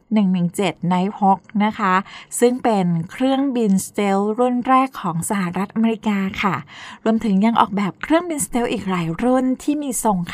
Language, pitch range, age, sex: Thai, 195-245 Hz, 20-39, female